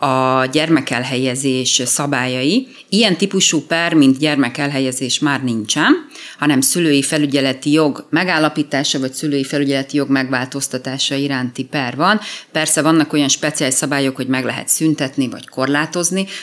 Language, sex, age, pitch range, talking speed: Hungarian, female, 30-49, 135-160 Hz, 125 wpm